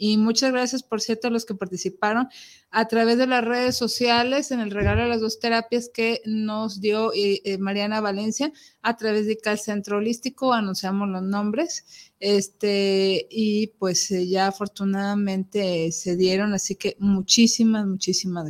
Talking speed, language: 160 wpm, Spanish